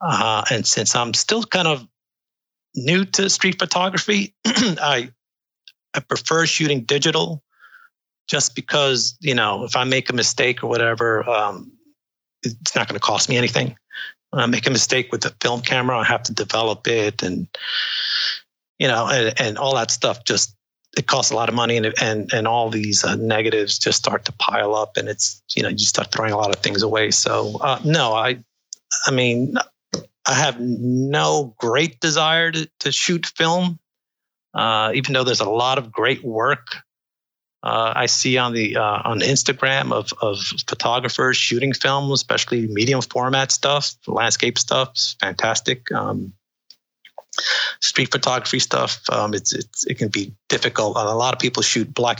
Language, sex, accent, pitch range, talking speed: English, male, American, 110-145 Hz, 170 wpm